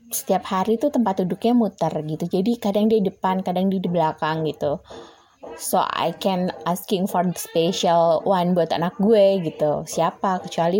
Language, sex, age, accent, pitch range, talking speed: Indonesian, female, 20-39, native, 165-210 Hz, 160 wpm